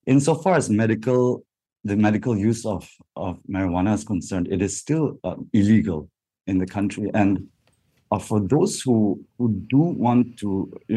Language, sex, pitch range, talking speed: English, male, 90-105 Hz, 160 wpm